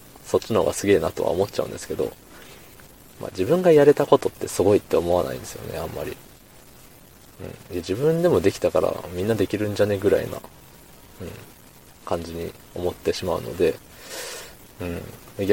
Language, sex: Japanese, male